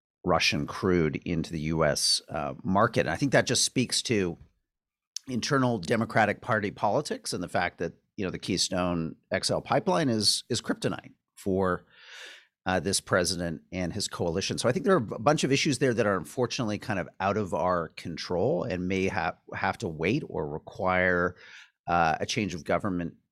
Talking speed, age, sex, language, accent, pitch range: 180 wpm, 50-69, male, English, American, 90-135 Hz